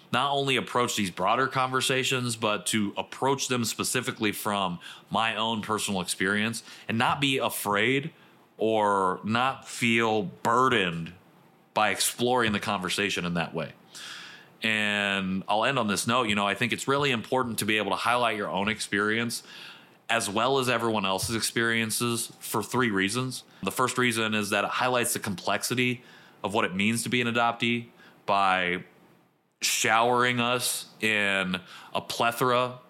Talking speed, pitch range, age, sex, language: 155 wpm, 100-125 Hz, 30-49, male, English